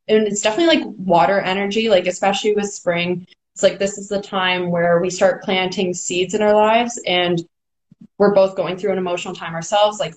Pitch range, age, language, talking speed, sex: 165-195 Hz, 20-39, English, 200 wpm, female